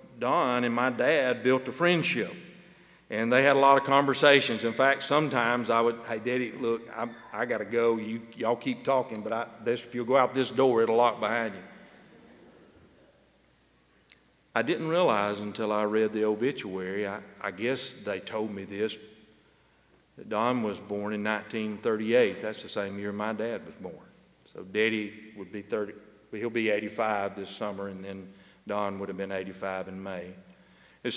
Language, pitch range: English, 100-125 Hz